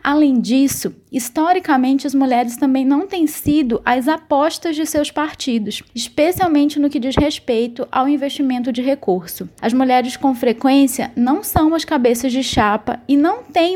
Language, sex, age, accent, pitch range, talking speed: Portuguese, female, 20-39, Brazilian, 245-300 Hz, 155 wpm